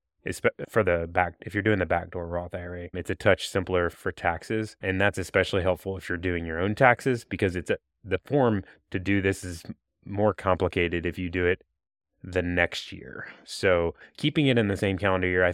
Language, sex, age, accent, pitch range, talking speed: English, male, 20-39, American, 90-105 Hz, 205 wpm